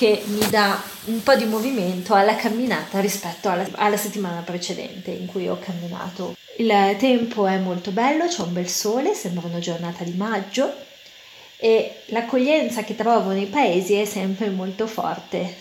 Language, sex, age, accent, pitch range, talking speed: Italian, female, 20-39, native, 180-225 Hz, 160 wpm